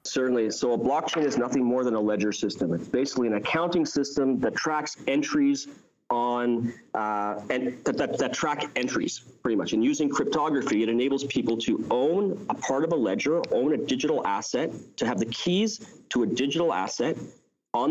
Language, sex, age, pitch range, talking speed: English, male, 40-59, 105-140 Hz, 185 wpm